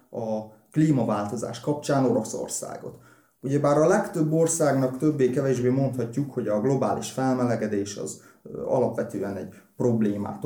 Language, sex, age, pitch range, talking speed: Hungarian, male, 30-49, 115-145 Hz, 110 wpm